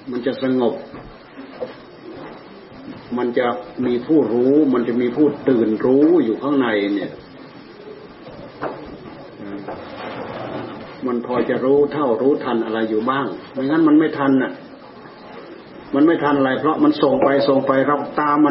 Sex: male